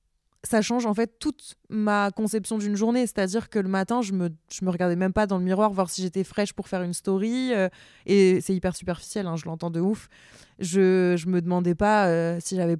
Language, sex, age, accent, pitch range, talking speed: French, female, 20-39, French, 175-210 Hz, 235 wpm